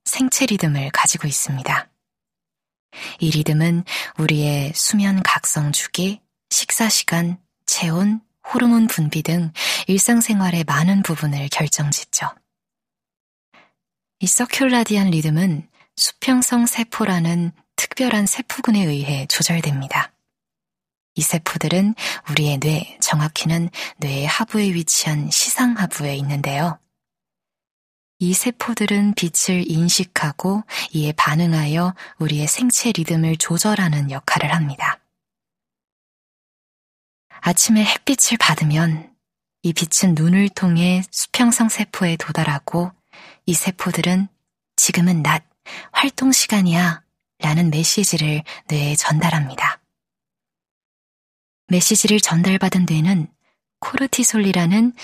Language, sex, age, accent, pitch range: Korean, female, 20-39, native, 155-205 Hz